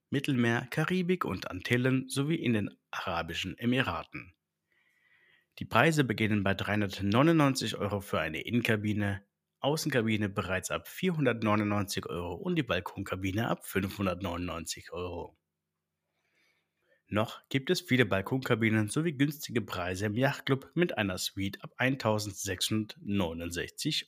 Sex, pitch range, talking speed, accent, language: male, 95-135 Hz, 110 wpm, German, German